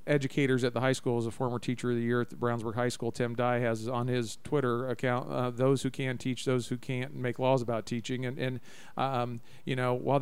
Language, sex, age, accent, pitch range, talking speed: English, male, 40-59, American, 120-135 Hz, 245 wpm